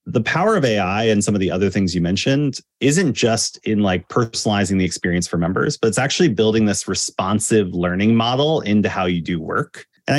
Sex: male